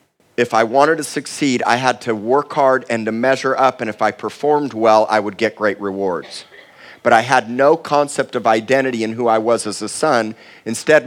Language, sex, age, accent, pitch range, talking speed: English, male, 40-59, American, 115-145 Hz, 210 wpm